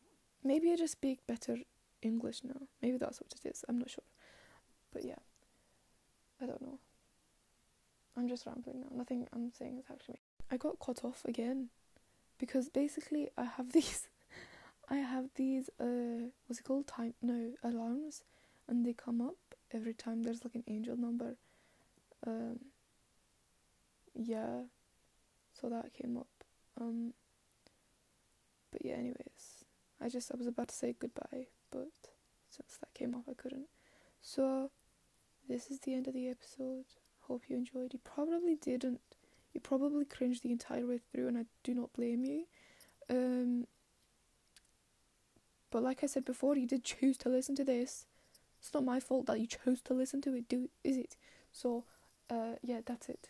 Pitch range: 240-270 Hz